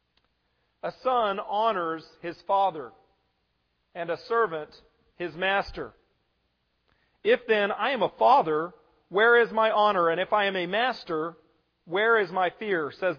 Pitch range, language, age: 165-215 Hz, English, 40-59